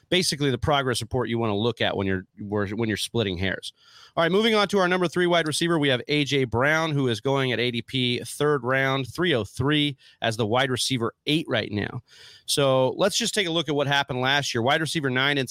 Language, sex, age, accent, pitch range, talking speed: English, male, 30-49, American, 120-160 Hz, 230 wpm